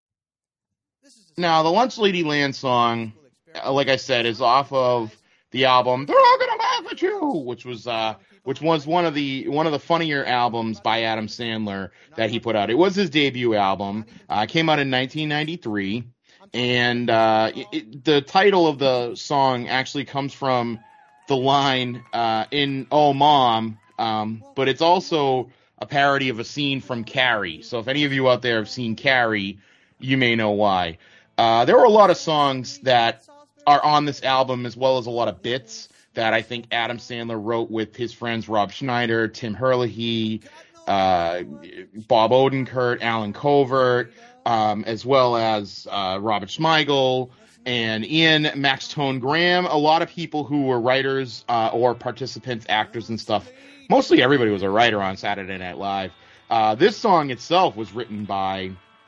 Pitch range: 110-145 Hz